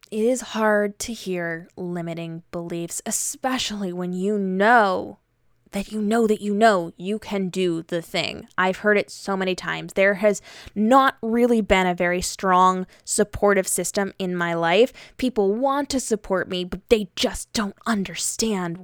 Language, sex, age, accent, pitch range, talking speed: English, female, 20-39, American, 180-230 Hz, 160 wpm